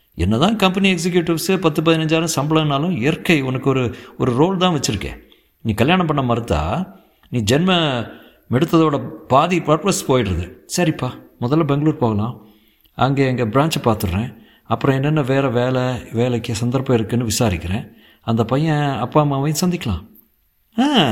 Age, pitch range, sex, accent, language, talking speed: 50-69, 100-140 Hz, male, native, Tamil, 130 wpm